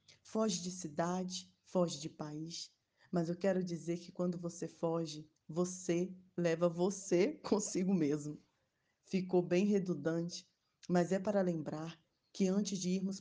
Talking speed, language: 135 wpm, Portuguese